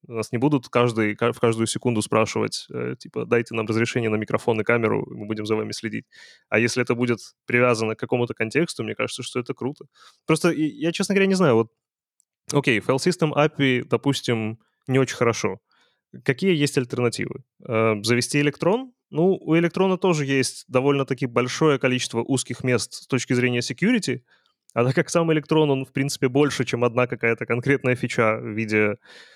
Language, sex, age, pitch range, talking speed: Ukrainian, male, 20-39, 115-145 Hz, 175 wpm